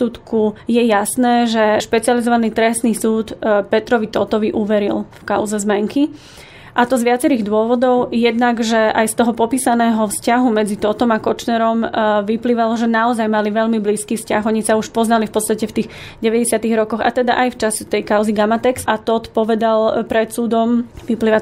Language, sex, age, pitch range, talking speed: Slovak, female, 30-49, 220-240 Hz, 165 wpm